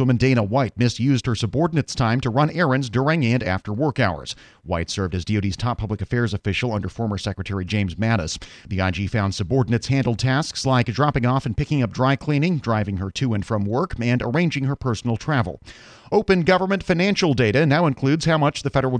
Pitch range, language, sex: 110-140 Hz, English, male